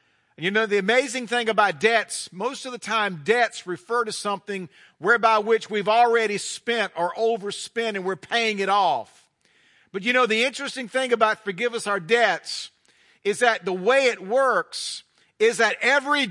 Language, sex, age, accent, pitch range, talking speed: English, male, 50-69, American, 195-250 Hz, 175 wpm